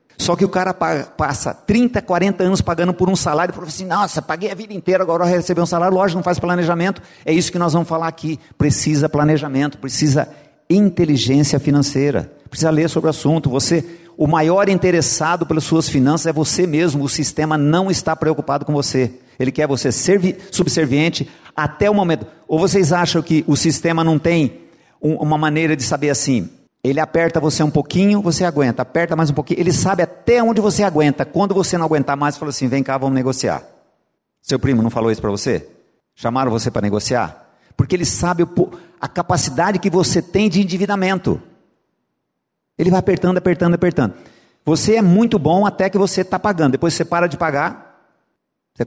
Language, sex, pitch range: Portuguese, male, 145-180 Hz